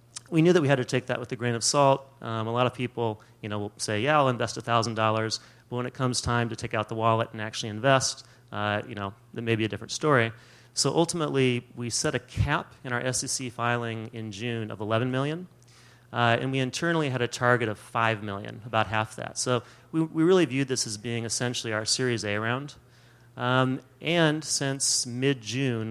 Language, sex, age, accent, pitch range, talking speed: English, male, 30-49, American, 115-130 Hz, 215 wpm